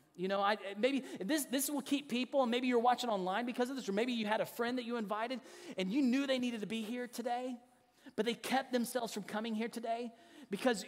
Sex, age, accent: male, 30-49, American